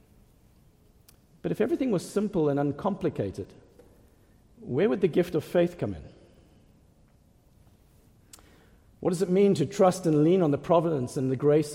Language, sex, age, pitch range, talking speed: English, male, 50-69, 125-175 Hz, 150 wpm